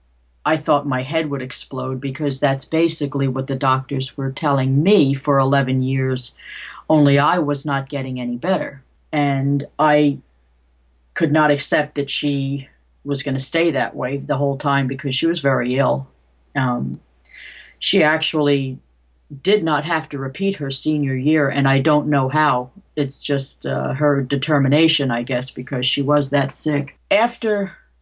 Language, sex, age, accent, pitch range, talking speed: English, female, 40-59, American, 135-160 Hz, 160 wpm